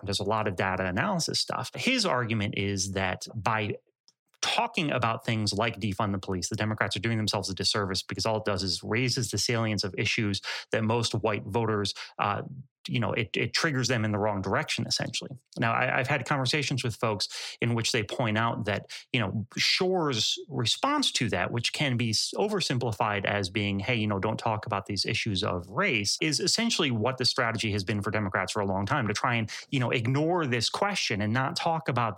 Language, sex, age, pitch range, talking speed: English, male, 30-49, 105-130 Hz, 210 wpm